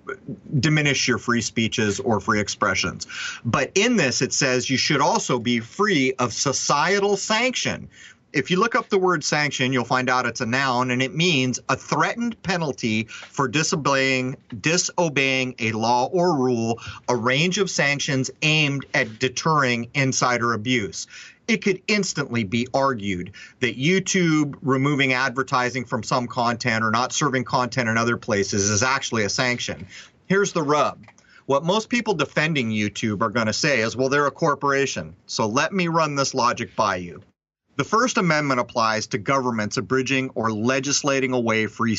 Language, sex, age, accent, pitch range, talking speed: English, male, 30-49, American, 115-150 Hz, 165 wpm